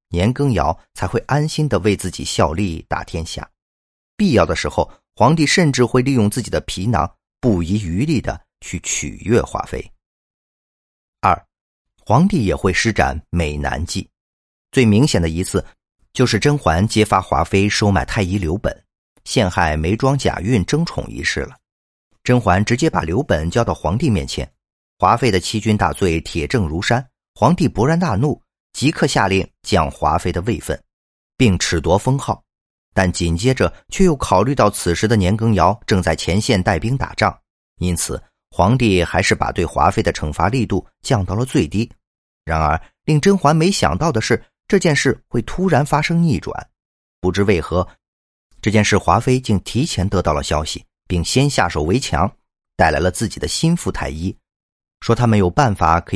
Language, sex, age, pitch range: Chinese, male, 40-59, 85-125 Hz